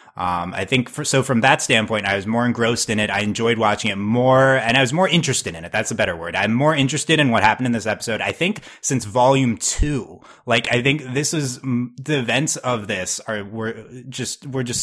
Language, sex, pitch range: English, male, 100-130 Hz